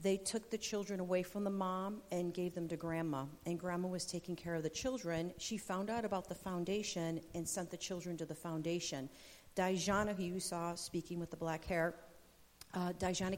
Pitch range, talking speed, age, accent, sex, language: 180-235 Hz, 200 wpm, 50-69, American, female, English